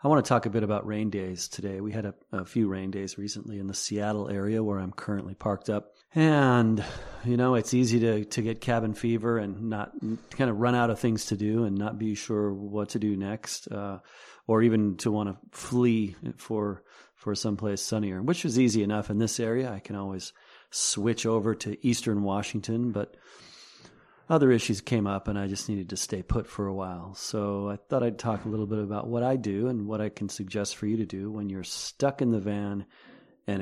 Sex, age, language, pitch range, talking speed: male, 40-59, English, 100-115 Hz, 220 wpm